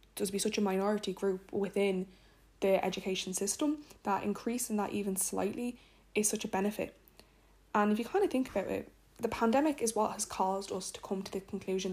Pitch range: 195-225 Hz